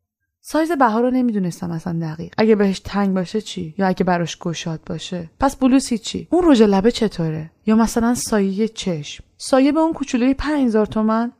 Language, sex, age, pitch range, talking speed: Persian, female, 20-39, 175-235 Hz, 180 wpm